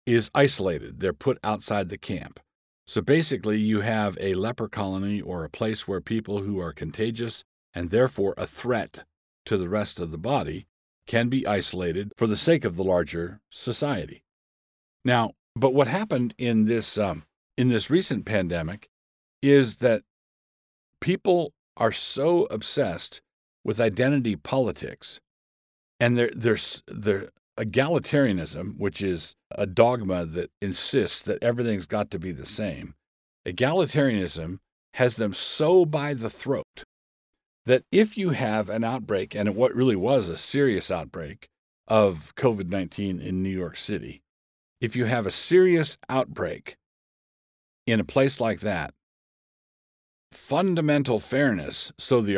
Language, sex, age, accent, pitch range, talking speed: English, male, 50-69, American, 95-130 Hz, 140 wpm